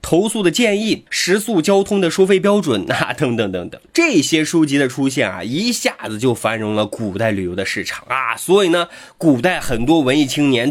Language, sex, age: Chinese, male, 20-39